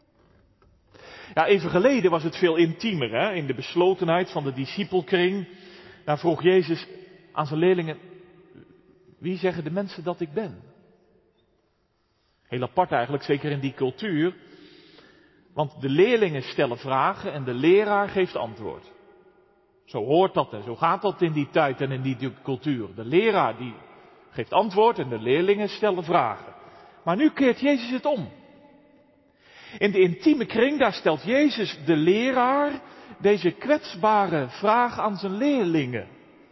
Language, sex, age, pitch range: Dutch, male, 40-59, 165-270 Hz